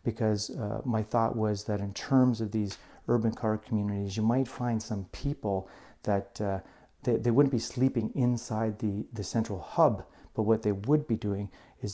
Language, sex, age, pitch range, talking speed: English, male, 40-59, 100-120 Hz, 185 wpm